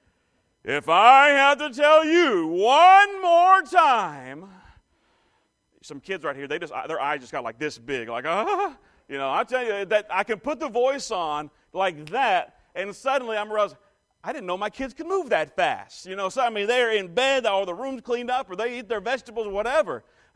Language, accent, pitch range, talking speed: English, American, 175-265 Hz, 210 wpm